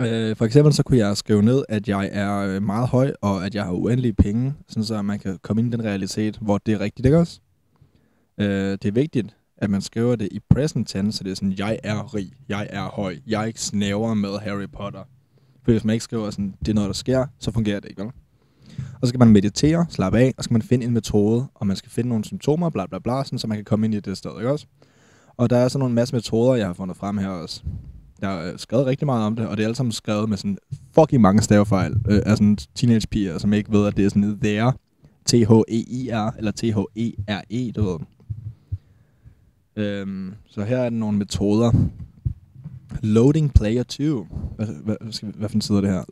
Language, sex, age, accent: Danish, male, 20-39, native